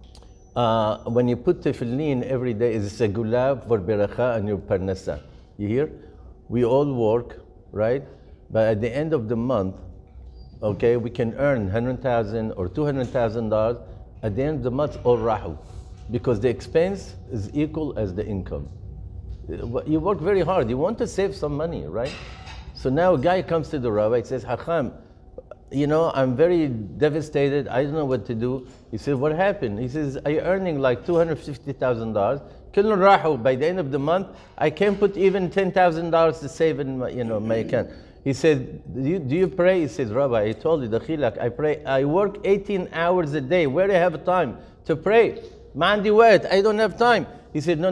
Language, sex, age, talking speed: English, male, 50-69, 180 wpm